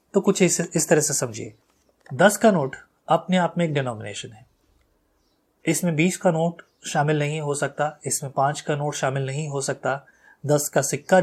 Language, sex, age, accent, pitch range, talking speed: Hindi, male, 30-49, native, 135-170 Hz, 185 wpm